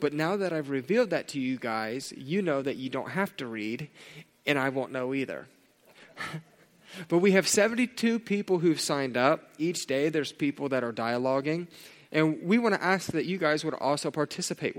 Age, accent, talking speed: 30-49, American, 195 wpm